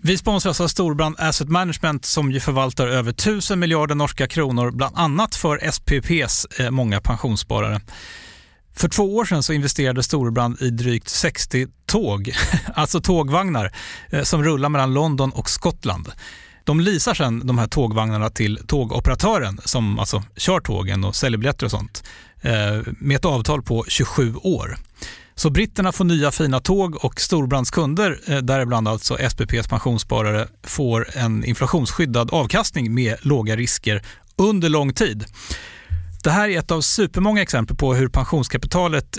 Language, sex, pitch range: Swedish, male, 120-165 Hz